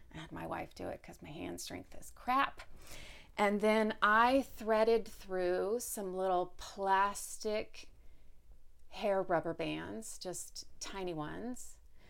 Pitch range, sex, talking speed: 170-205 Hz, female, 130 wpm